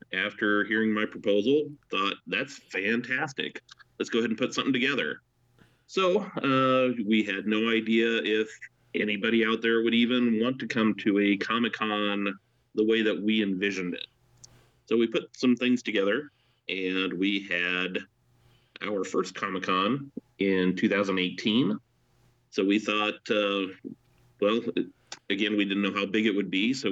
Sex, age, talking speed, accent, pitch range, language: male, 30-49, 150 wpm, American, 95-110 Hz, English